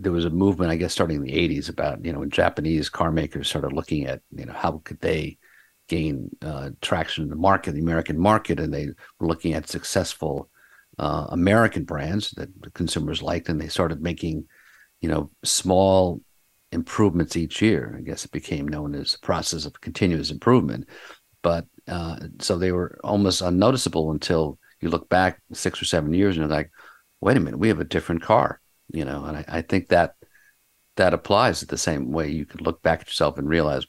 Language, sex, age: English, male, 50-69